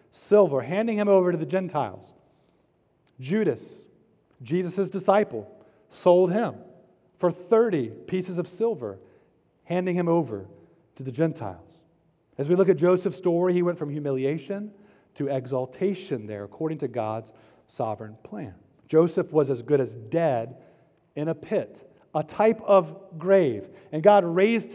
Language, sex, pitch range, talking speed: English, male, 150-195 Hz, 140 wpm